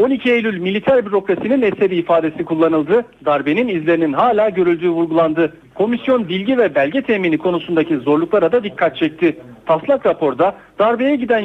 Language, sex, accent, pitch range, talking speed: Turkish, male, native, 170-250 Hz, 135 wpm